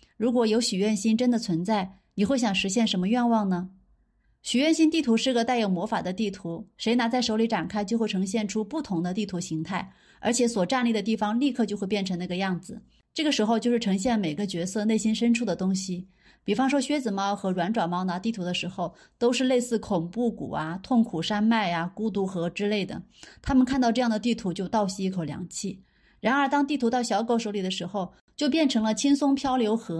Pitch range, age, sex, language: 190-240 Hz, 30-49, female, Chinese